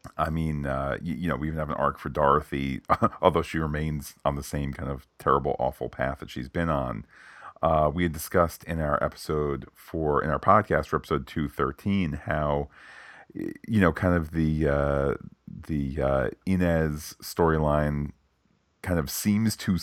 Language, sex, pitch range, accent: English, male, 75-85 Hz, American